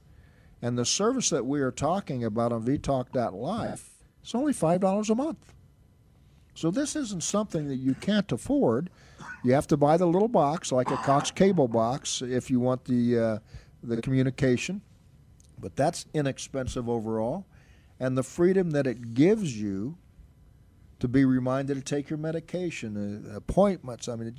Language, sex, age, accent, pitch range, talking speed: English, male, 50-69, American, 125-165 Hz, 155 wpm